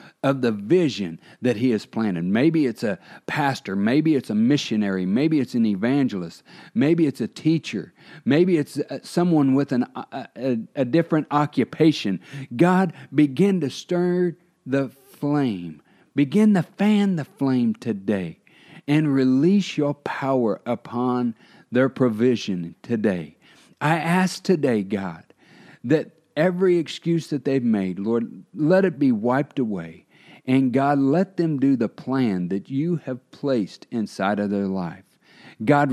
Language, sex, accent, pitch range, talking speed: English, male, American, 110-160 Hz, 140 wpm